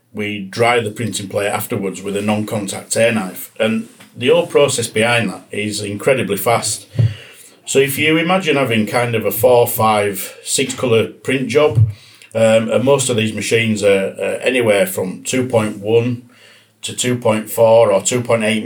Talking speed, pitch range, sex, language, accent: 160 wpm, 105-125 Hz, male, English, British